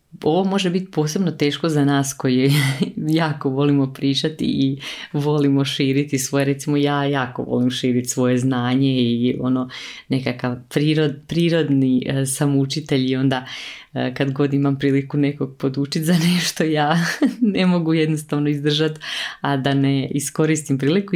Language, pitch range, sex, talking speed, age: Croatian, 130-160 Hz, female, 135 wpm, 30-49